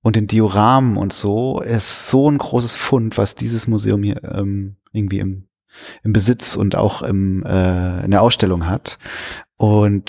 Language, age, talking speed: German, 30-49, 160 wpm